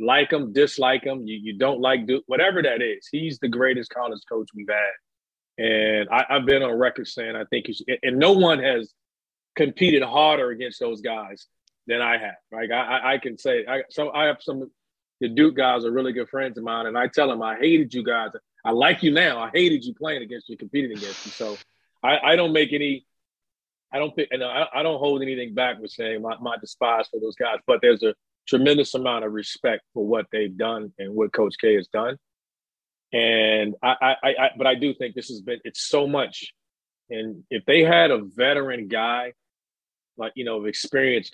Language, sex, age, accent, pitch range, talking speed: English, male, 40-59, American, 115-150 Hz, 215 wpm